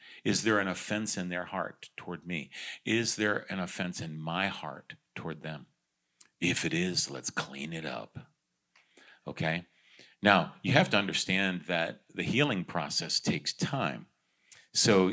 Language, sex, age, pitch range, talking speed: English, male, 40-59, 80-110 Hz, 150 wpm